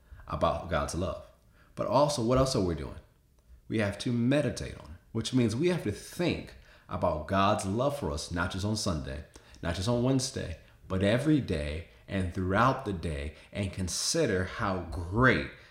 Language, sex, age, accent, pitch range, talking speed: English, male, 30-49, American, 85-115 Hz, 170 wpm